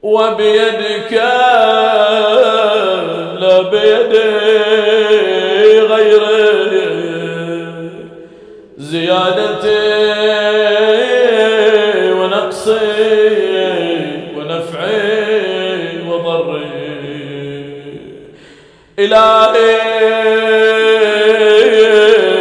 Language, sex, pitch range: Arabic, male, 205-225 Hz